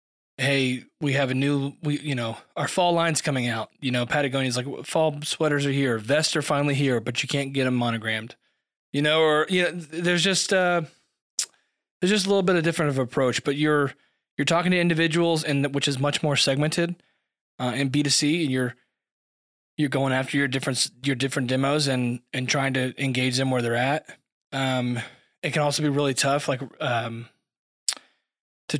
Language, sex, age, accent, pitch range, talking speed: English, male, 20-39, American, 125-150 Hz, 195 wpm